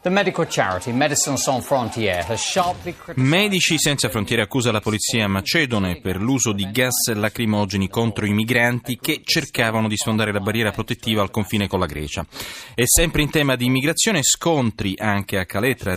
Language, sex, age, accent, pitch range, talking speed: Italian, male, 30-49, native, 100-130 Hz, 140 wpm